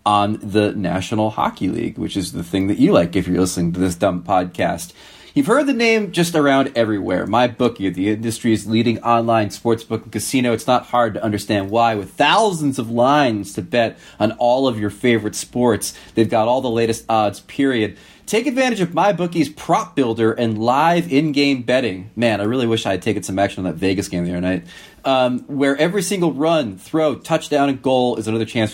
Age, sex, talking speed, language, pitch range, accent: 30-49, male, 205 wpm, English, 105-140 Hz, American